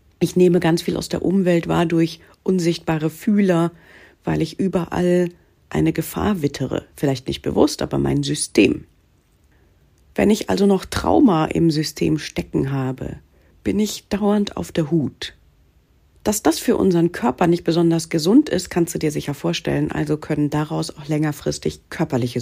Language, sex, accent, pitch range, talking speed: German, female, German, 145-180 Hz, 155 wpm